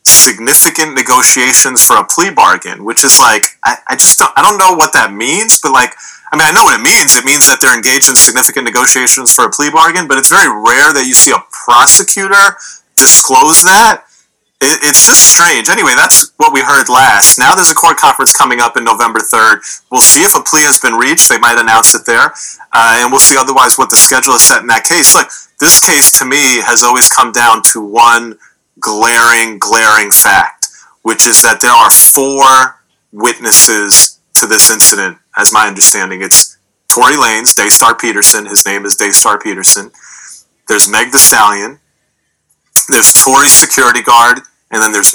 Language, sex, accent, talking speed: English, male, American, 195 wpm